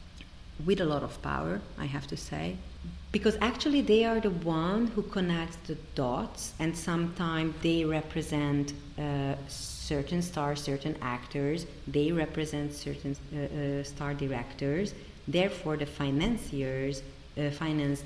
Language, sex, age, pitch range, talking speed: English, female, 40-59, 140-160 Hz, 135 wpm